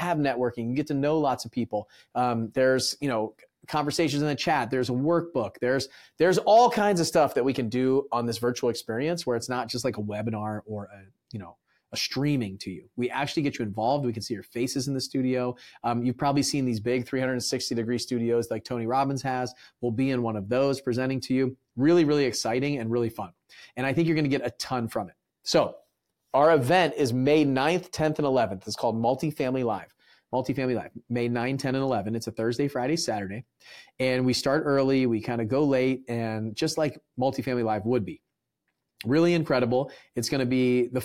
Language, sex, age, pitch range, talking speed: English, male, 30-49, 120-140 Hz, 220 wpm